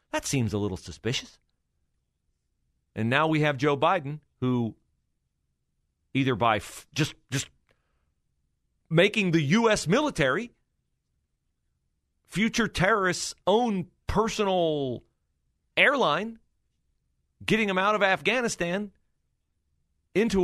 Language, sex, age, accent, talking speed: English, male, 40-59, American, 90 wpm